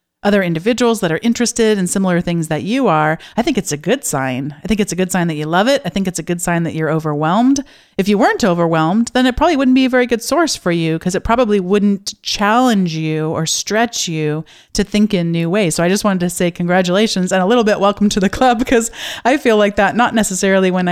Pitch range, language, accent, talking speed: 175-225 Hz, English, American, 250 wpm